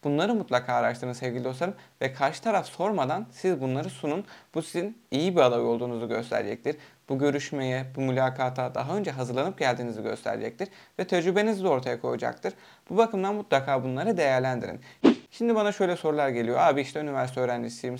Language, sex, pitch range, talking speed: Turkish, male, 125-160 Hz, 155 wpm